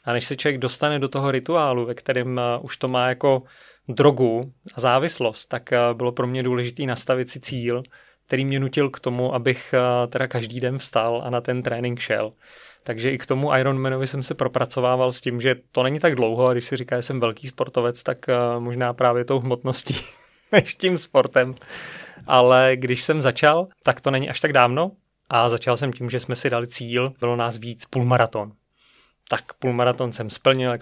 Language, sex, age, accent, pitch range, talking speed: Czech, male, 30-49, native, 120-135 Hz, 195 wpm